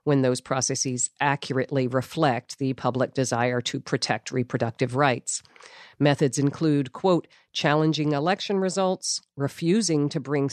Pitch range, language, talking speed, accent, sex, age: 125-160 Hz, English, 120 wpm, American, female, 50-69